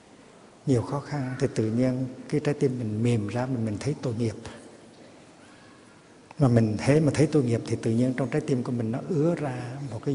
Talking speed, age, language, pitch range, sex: 220 wpm, 60-79, Vietnamese, 120-150 Hz, male